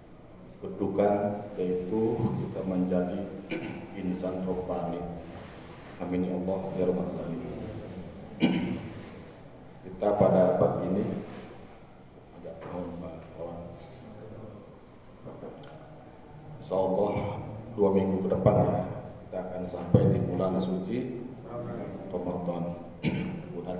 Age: 40-59